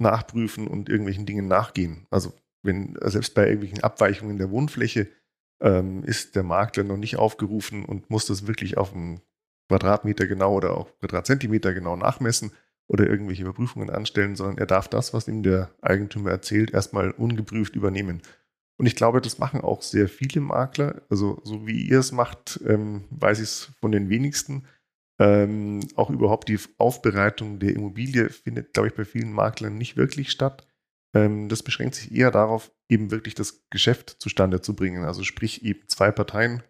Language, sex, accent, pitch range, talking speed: German, male, German, 100-115 Hz, 170 wpm